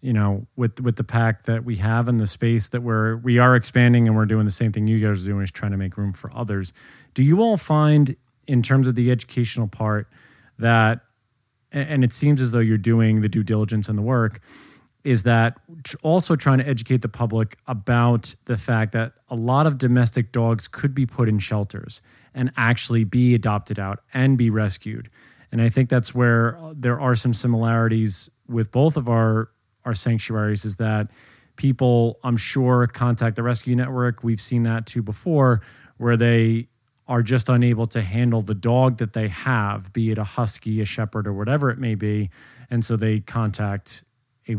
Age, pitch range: 30-49, 110-125 Hz